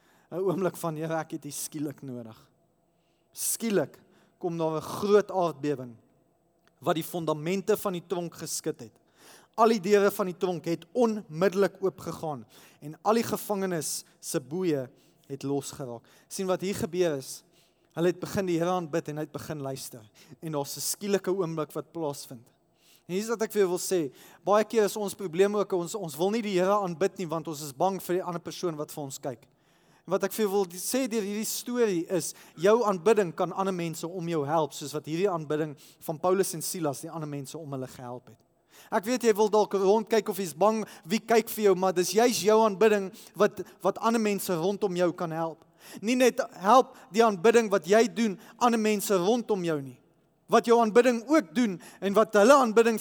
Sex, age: male, 20-39